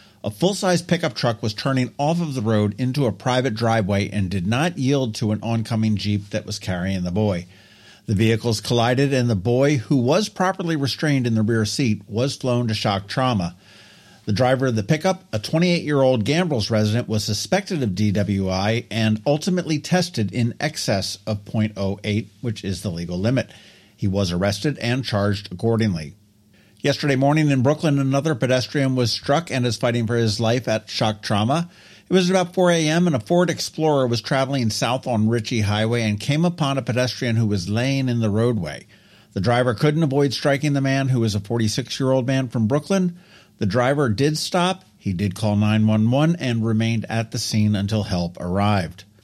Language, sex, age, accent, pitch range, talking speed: English, male, 50-69, American, 105-140 Hz, 185 wpm